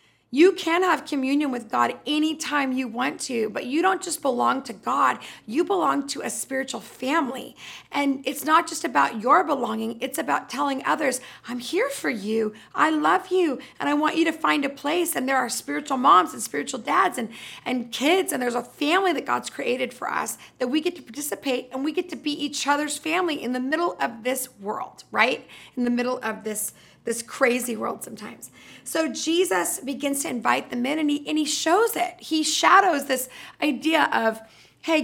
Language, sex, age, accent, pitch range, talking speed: English, female, 40-59, American, 250-320 Hz, 200 wpm